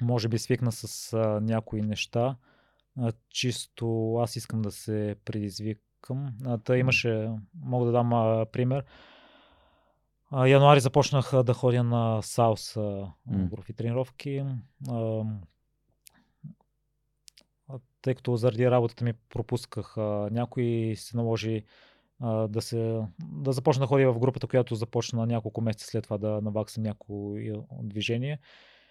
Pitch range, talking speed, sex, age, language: 110-125 Hz, 130 wpm, male, 20-39, Bulgarian